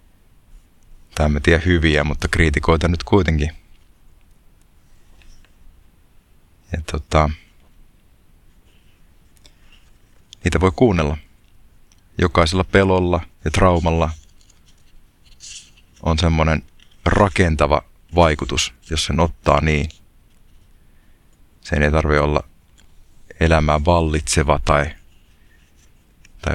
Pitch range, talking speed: 75-90 Hz, 75 wpm